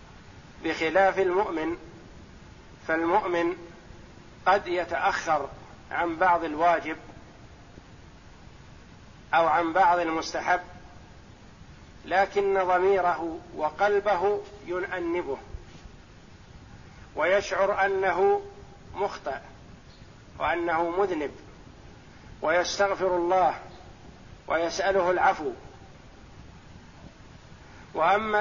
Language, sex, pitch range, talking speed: Arabic, male, 155-195 Hz, 55 wpm